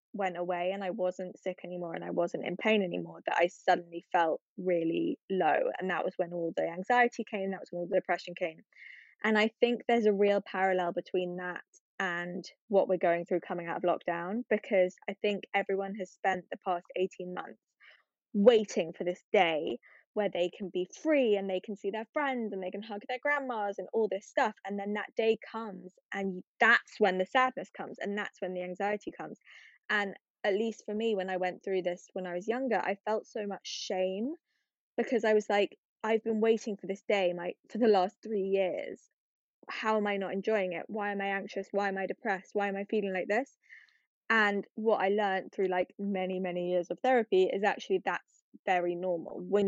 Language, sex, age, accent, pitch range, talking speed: English, female, 10-29, British, 185-215 Hz, 215 wpm